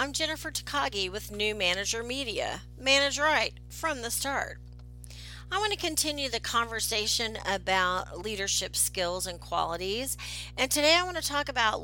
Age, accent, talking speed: 40-59, American, 140 wpm